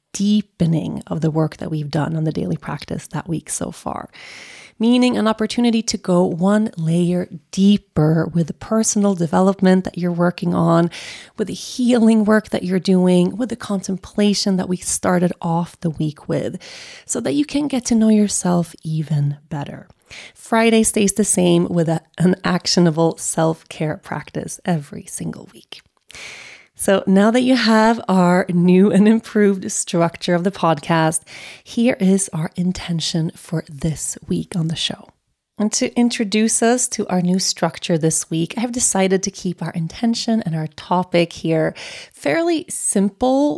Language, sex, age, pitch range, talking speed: English, female, 30-49, 170-220 Hz, 160 wpm